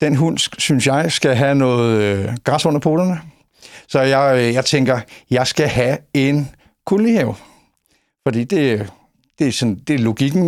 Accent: native